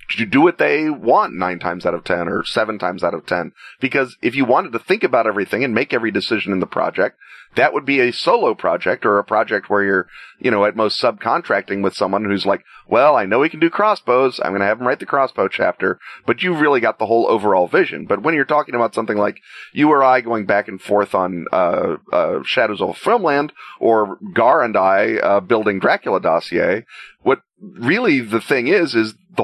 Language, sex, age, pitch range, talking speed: English, male, 30-49, 105-130 Hz, 225 wpm